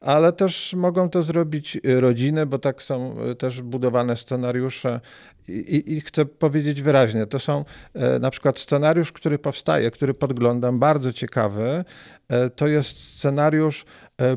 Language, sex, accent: Polish, male, native